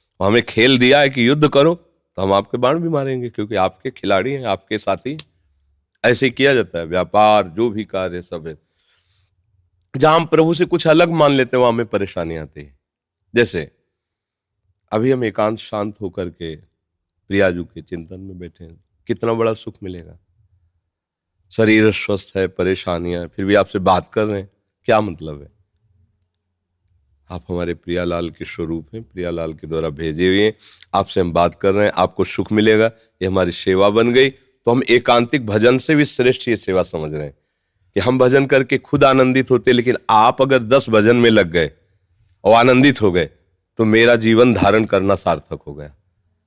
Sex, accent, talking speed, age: male, native, 185 wpm, 40-59